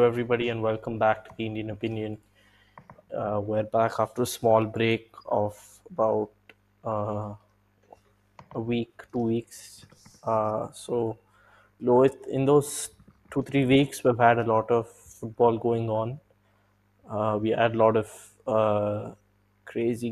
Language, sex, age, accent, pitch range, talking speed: English, male, 20-39, Indian, 105-120 Hz, 135 wpm